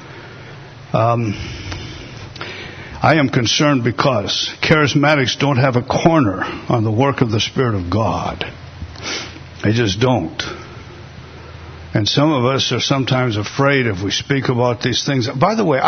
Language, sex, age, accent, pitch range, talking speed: English, male, 60-79, American, 120-150 Hz, 140 wpm